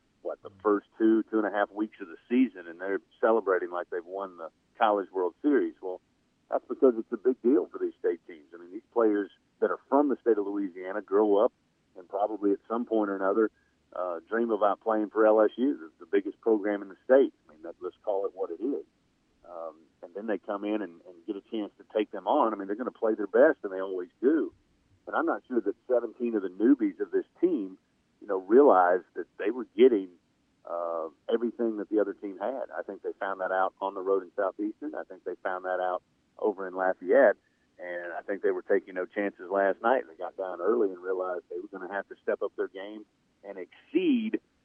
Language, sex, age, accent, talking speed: English, male, 50-69, American, 235 wpm